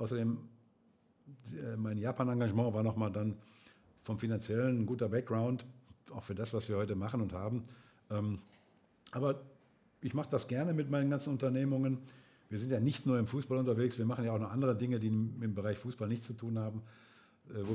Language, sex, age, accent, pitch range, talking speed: German, male, 50-69, German, 110-130 Hz, 180 wpm